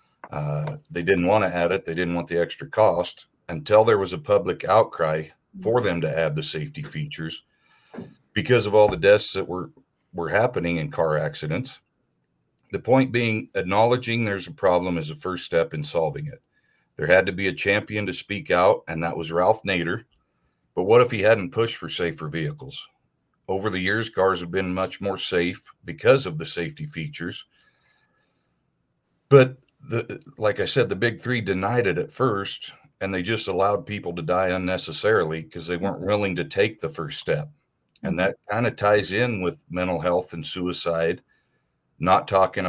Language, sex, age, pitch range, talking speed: English, male, 50-69, 85-110 Hz, 185 wpm